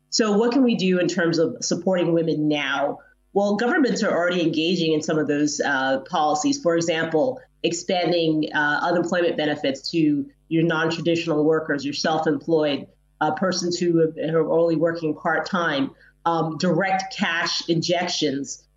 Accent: American